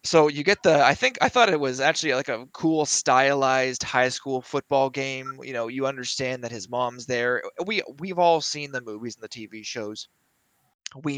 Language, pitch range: English, 115-140 Hz